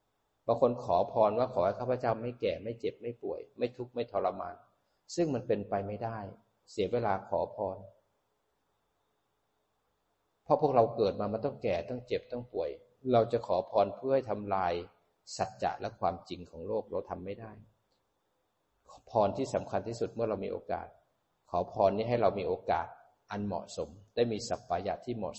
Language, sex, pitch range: Thai, male, 95-125 Hz